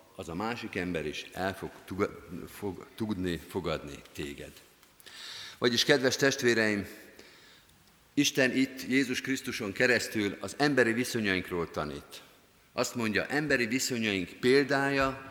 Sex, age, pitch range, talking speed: male, 50-69, 90-125 Hz, 115 wpm